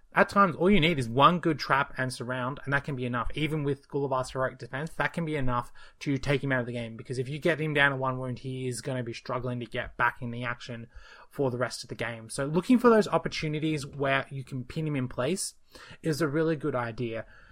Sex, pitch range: male, 130-170 Hz